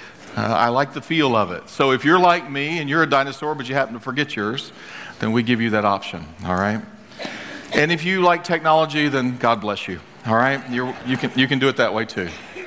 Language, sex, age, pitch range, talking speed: English, male, 40-59, 100-130 Hz, 240 wpm